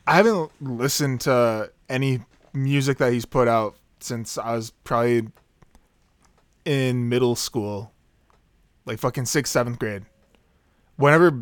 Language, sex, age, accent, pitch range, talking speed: English, male, 20-39, American, 115-145 Hz, 120 wpm